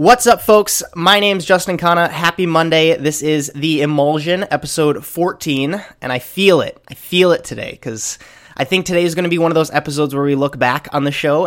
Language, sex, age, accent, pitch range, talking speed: English, male, 20-39, American, 120-155 Hz, 220 wpm